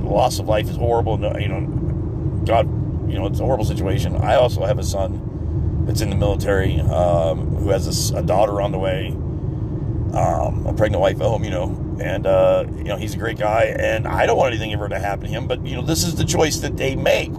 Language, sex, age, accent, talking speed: English, male, 40-59, American, 240 wpm